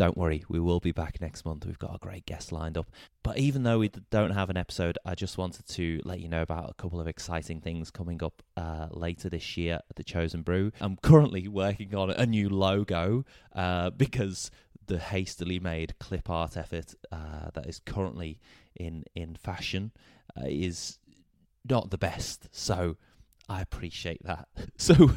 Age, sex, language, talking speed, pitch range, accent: 20-39, male, English, 185 wpm, 85-100 Hz, British